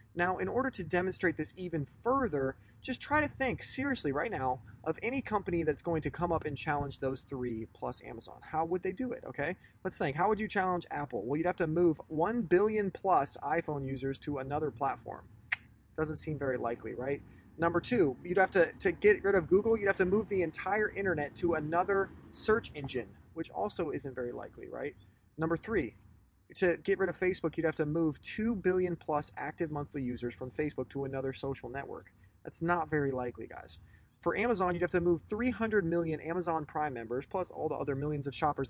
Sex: male